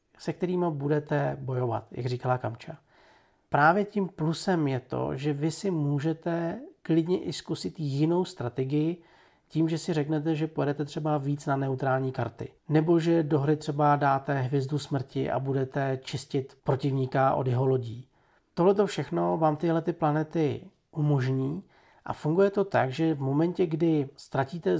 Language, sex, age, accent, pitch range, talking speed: Czech, male, 40-59, native, 130-160 Hz, 150 wpm